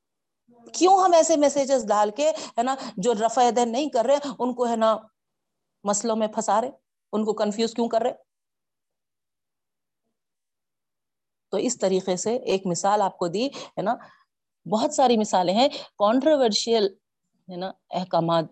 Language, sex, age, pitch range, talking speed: Urdu, female, 40-59, 195-280 Hz, 145 wpm